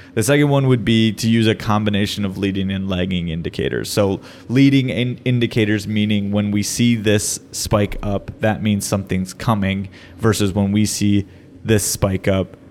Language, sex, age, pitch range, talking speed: English, male, 20-39, 100-115 Hz, 165 wpm